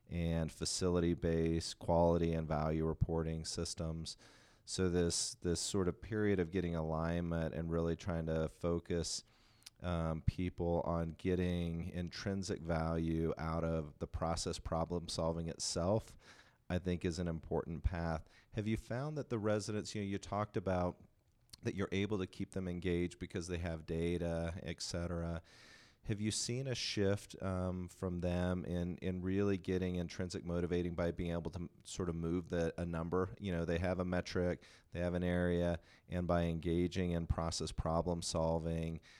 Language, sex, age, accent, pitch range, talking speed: English, male, 40-59, American, 85-95 Hz, 165 wpm